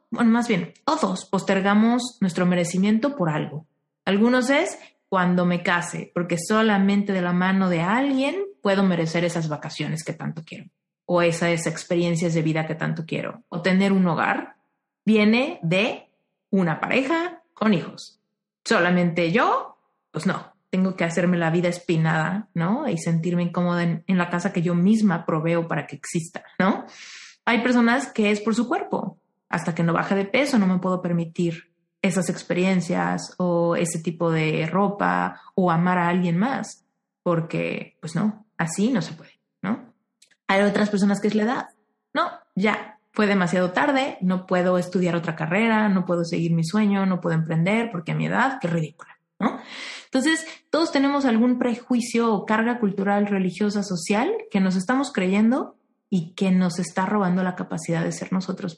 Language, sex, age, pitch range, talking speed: Spanish, female, 30-49, 175-215 Hz, 170 wpm